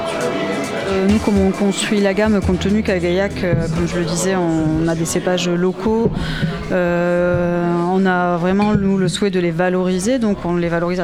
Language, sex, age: French, female, 20-39